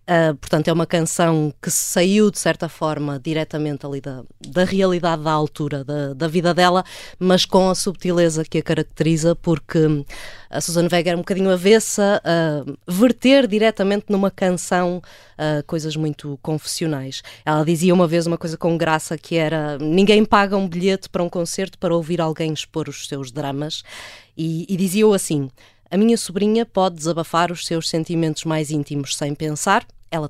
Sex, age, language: female, 20-39, Portuguese